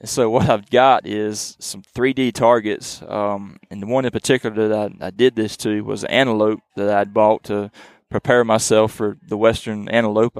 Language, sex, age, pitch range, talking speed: English, male, 20-39, 110-125 Hz, 190 wpm